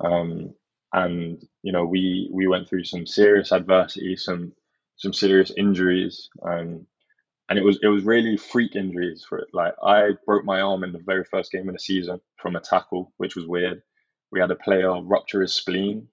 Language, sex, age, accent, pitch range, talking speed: English, male, 20-39, British, 90-100 Hz, 195 wpm